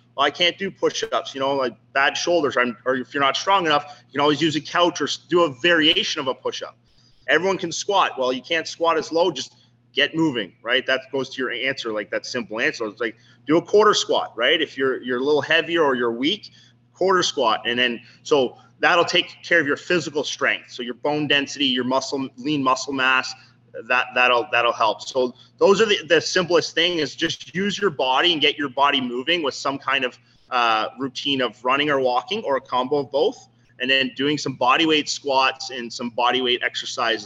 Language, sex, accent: English, male, American